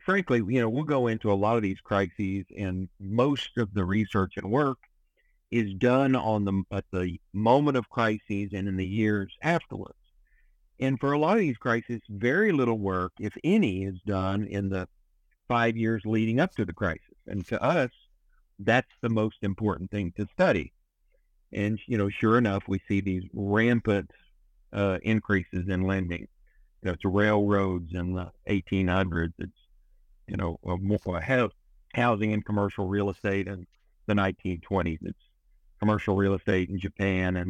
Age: 50-69